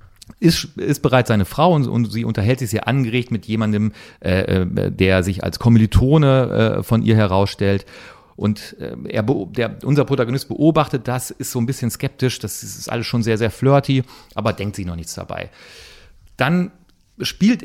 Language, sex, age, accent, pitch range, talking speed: German, male, 40-59, German, 110-140 Hz, 175 wpm